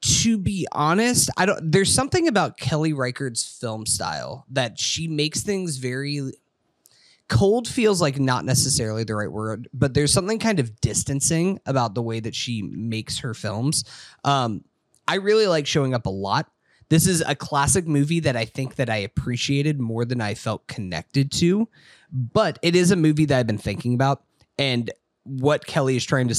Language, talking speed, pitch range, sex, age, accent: English, 180 wpm, 120-150 Hz, male, 20-39, American